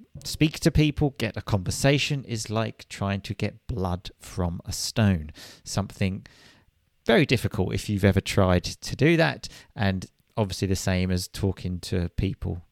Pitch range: 100-135 Hz